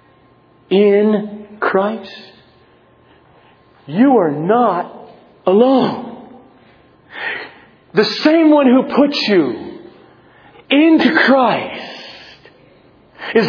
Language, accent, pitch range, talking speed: English, American, 180-275 Hz, 65 wpm